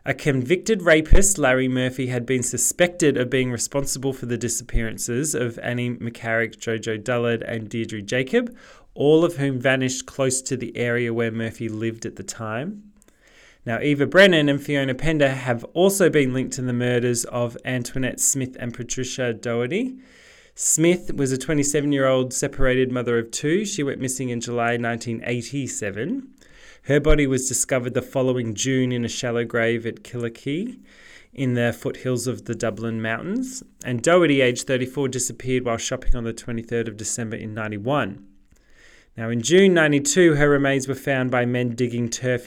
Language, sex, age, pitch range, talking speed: English, male, 20-39, 120-140 Hz, 165 wpm